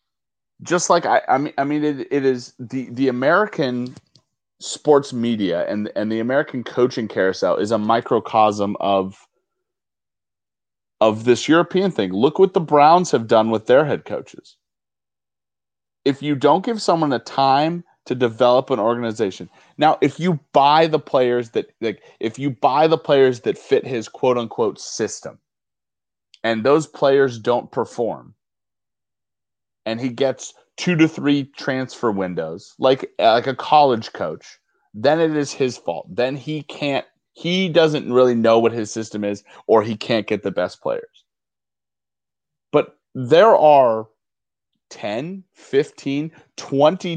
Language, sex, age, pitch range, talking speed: English, male, 30-49, 110-150 Hz, 150 wpm